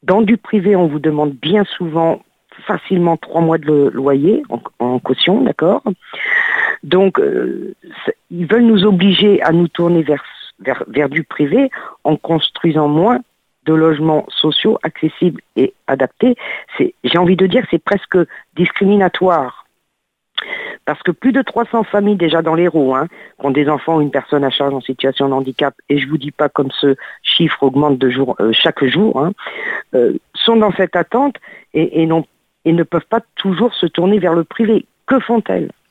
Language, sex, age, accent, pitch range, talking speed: French, female, 50-69, French, 145-190 Hz, 180 wpm